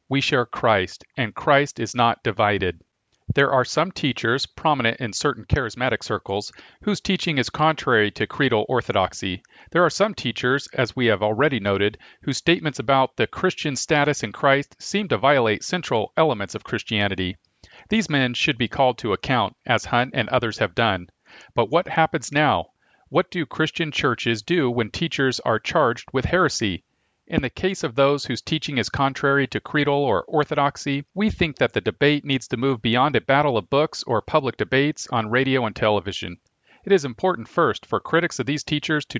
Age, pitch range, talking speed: 40-59, 115-155 Hz, 180 wpm